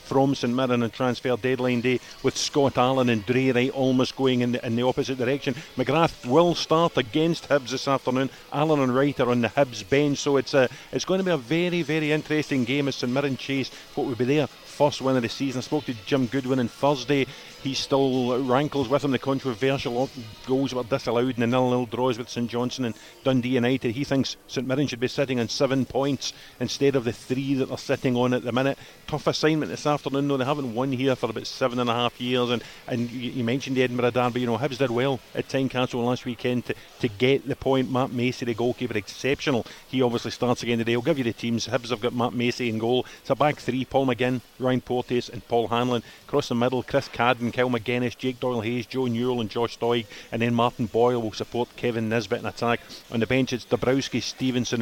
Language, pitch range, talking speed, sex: English, 120-135 Hz, 230 wpm, male